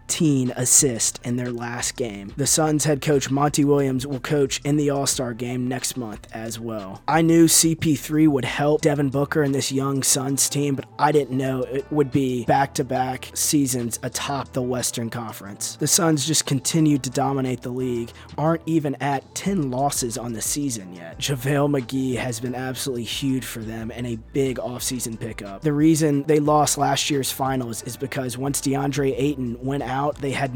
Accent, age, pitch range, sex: American, 20-39, 120-140 Hz, male